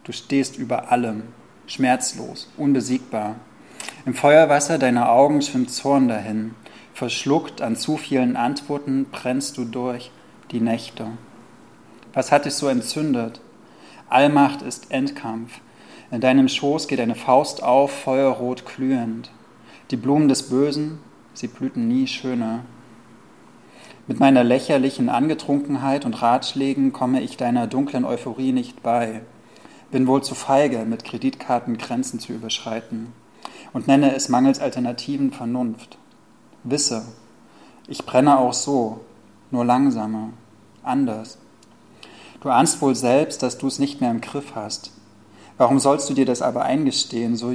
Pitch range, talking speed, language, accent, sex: 115-140 Hz, 130 wpm, German, German, male